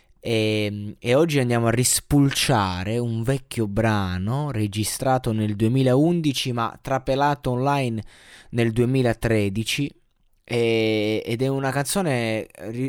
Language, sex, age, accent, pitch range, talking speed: Italian, male, 20-39, native, 105-135 Hz, 105 wpm